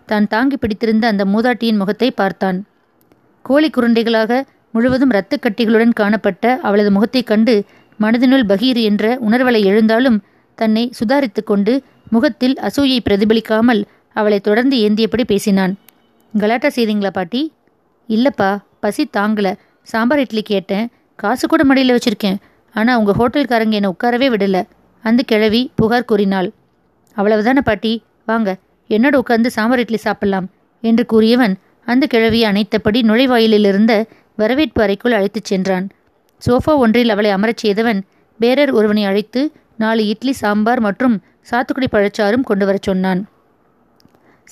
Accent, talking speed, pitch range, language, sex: native, 115 wpm, 210-245 Hz, Tamil, female